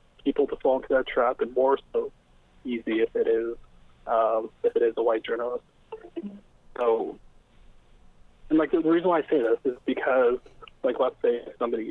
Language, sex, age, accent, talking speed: English, male, 20-39, American, 180 wpm